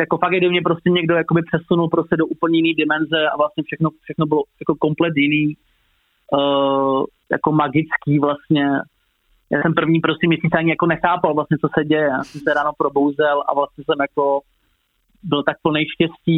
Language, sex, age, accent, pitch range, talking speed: Czech, male, 20-39, native, 140-160 Hz, 170 wpm